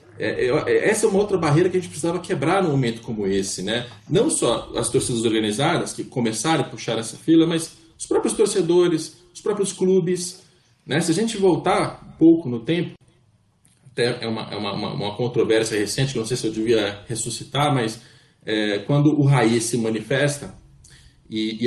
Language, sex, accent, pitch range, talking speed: Portuguese, male, Brazilian, 115-170 Hz, 170 wpm